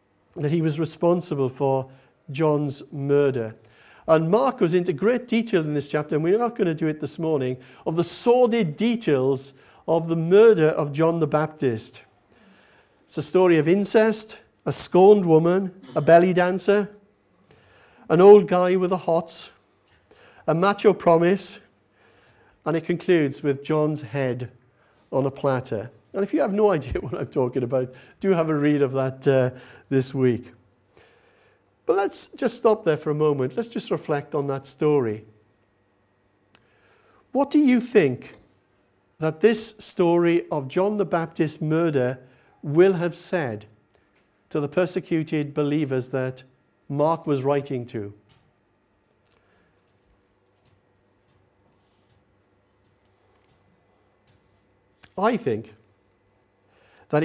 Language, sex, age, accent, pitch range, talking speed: English, male, 50-69, British, 120-175 Hz, 130 wpm